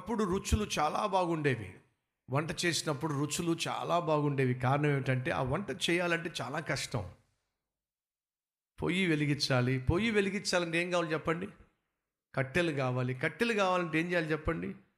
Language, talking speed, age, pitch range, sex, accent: Telugu, 120 wpm, 50-69, 135-180 Hz, male, native